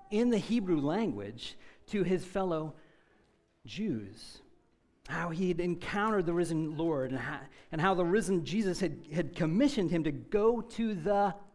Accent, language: American, English